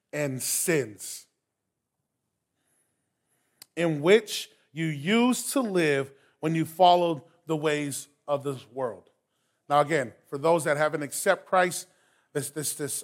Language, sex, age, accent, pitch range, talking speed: English, male, 30-49, American, 145-185 Hz, 125 wpm